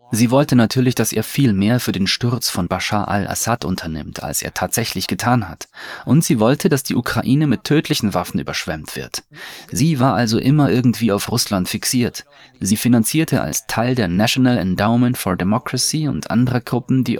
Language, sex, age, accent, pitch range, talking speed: German, male, 30-49, German, 105-125 Hz, 180 wpm